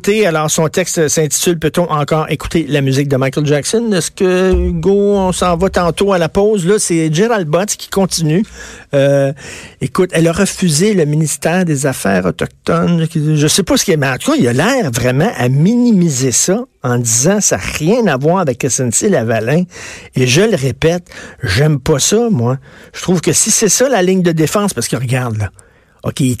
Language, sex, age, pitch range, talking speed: French, male, 50-69, 130-175 Hz, 210 wpm